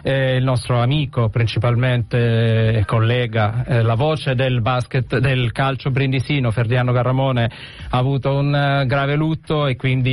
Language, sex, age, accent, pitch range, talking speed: Italian, male, 40-59, native, 125-145 Hz, 150 wpm